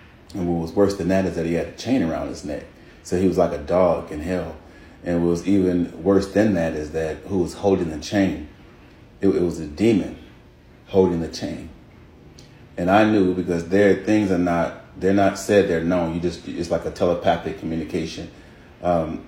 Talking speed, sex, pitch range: 200 wpm, male, 85-95 Hz